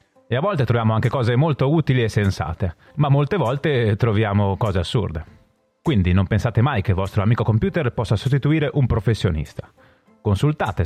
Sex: male